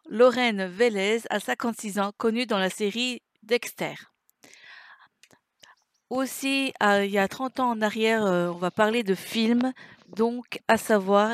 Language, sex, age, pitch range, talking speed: French, female, 50-69, 195-240 Hz, 150 wpm